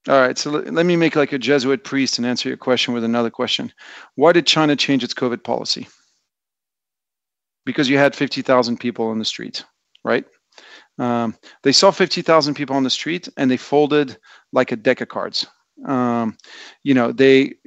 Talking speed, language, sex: 180 wpm, English, male